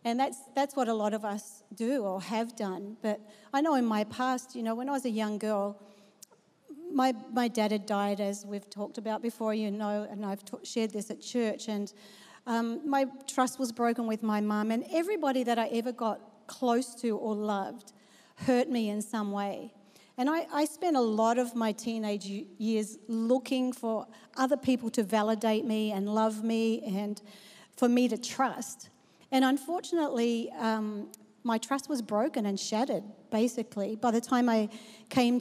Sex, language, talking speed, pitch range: female, English, 185 wpm, 210-255 Hz